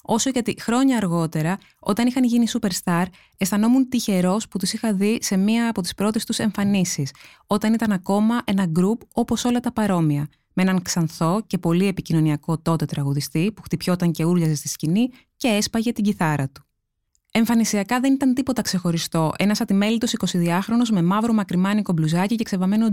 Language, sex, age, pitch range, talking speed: Greek, female, 20-39, 175-225 Hz, 165 wpm